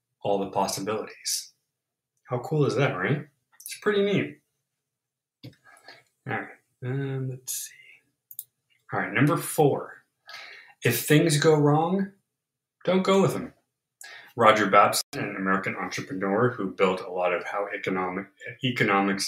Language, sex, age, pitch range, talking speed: English, male, 30-49, 115-150 Hz, 125 wpm